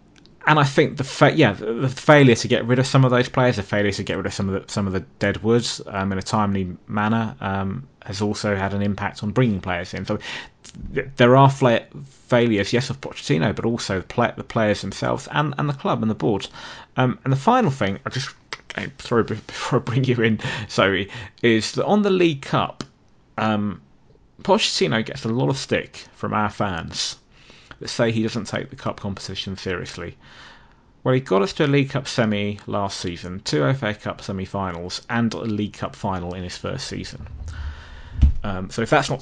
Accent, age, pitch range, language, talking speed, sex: British, 20-39, 100-125 Hz, English, 200 wpm, male